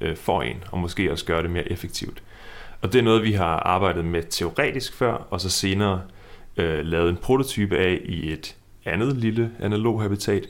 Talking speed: 190 wpm